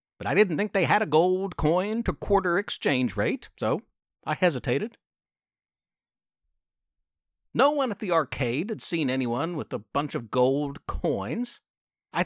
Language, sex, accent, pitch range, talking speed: English, male, American, 125-195 Hz, 150 wpm